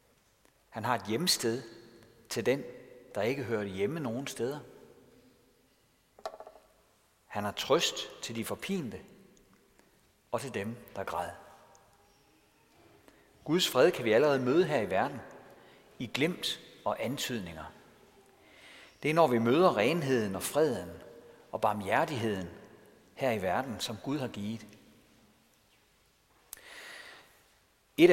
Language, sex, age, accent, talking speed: Danish, male, 60-79, native, 115 wpm